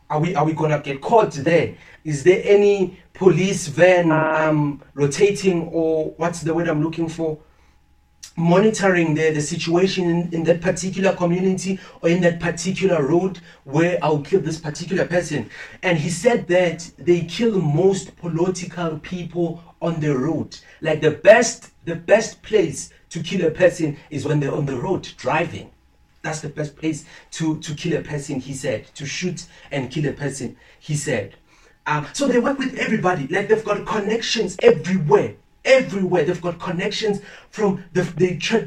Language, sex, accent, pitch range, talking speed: English, male, South African, 155-190 Hz, 170 wpm